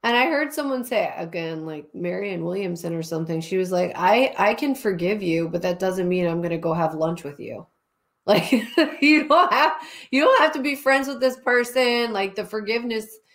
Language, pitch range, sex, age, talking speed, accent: English, 185-225 Hz, female, 30-49, 200 wpm, American